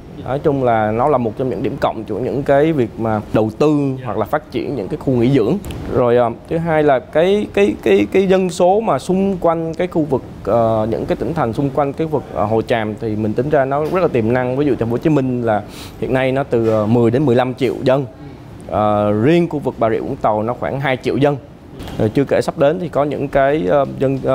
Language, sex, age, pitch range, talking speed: Vietnamese, male, 20-39, 110-145 Hz, 260 wpm